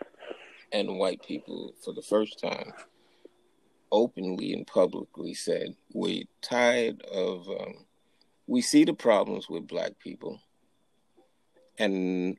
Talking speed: 115 wpm